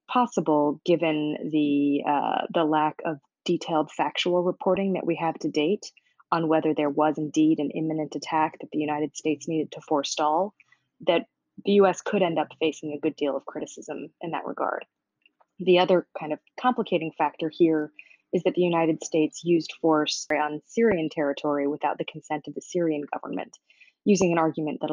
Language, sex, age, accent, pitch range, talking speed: English, female, 20-39, American, 150-170 Hz, 175 wpm